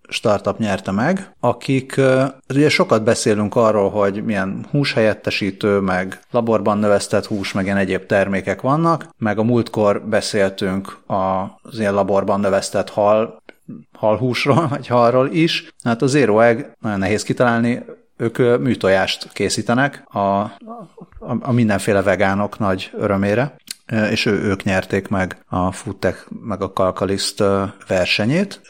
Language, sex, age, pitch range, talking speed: Hungarian, male, 30-49, 100-120 Hz, 130 wpm